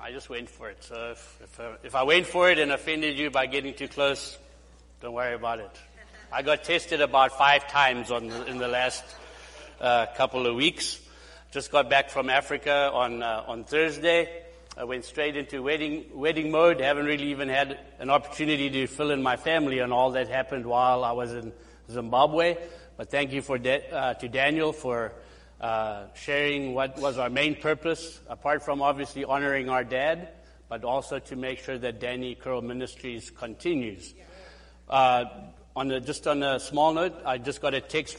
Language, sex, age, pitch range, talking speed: English, male, 60-79, 125-145 Hz, 185 wpm